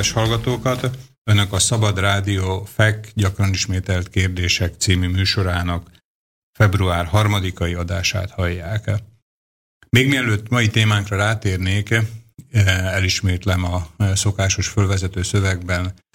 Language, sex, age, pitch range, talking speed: Slovak, male, 50-69, 90-105 Hz, 90 wpm